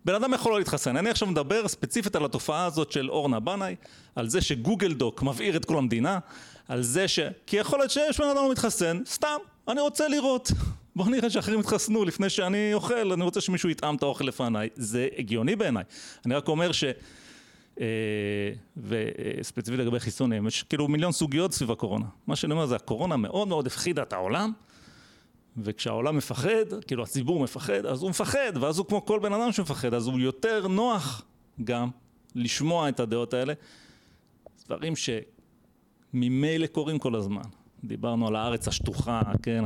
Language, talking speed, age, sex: Hebrew, 170 wpm, 40-59, male